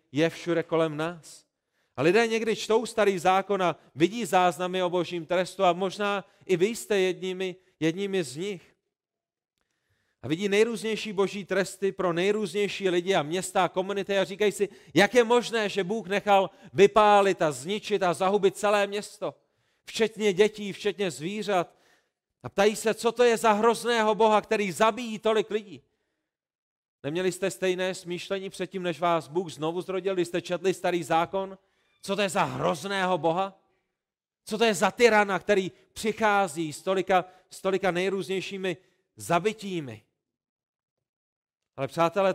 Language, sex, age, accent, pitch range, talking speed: Czech, male, 40-59, native, 175-205 Hz, 145 wpm